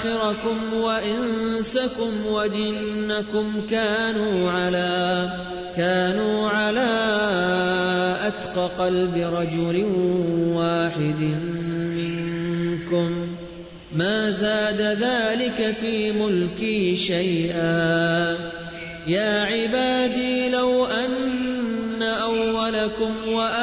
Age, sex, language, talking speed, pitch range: 20-39, male, Urdu, 50 wpm, 170-220 Hz